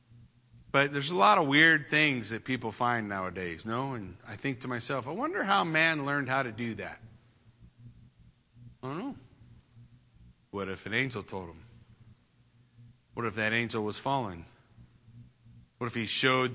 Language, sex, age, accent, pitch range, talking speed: English, male, 40-59, American, 115-150 Hz, 165 wpm